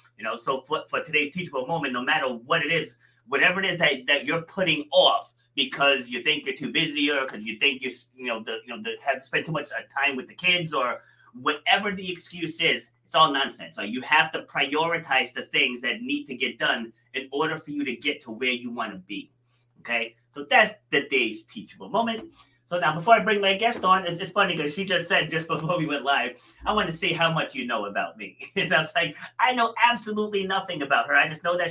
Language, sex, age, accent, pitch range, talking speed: English, male, 30-49, American, 135-180 Hz, 245 wpm